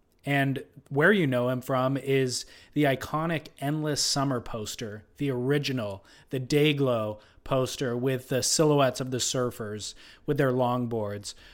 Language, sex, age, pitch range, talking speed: English, male, 30-49, 125-150 Hz, 135 wpm